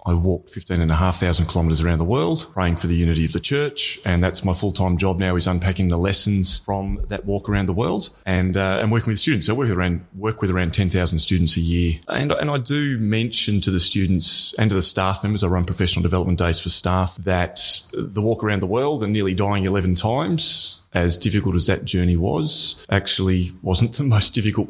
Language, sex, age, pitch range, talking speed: English, male, 30-49, 90-105 Hz, 220 wpm